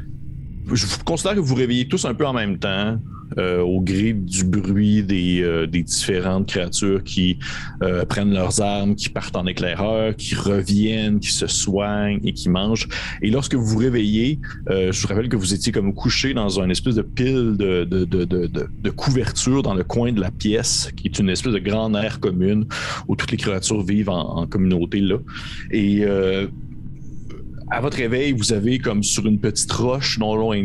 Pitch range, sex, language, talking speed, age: 95-115 Hz, male, French, 200 wpm, 30-49